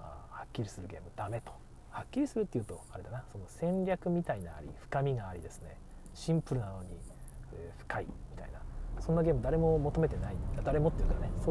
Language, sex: Japanese, male